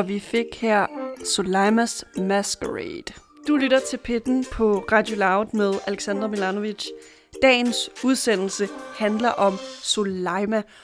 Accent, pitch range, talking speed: native, 195-230 Hz, 115 wpm